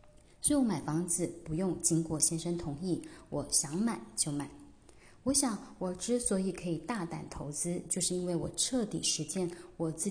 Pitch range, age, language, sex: 160-190 Hz, 20-39, Chinese, female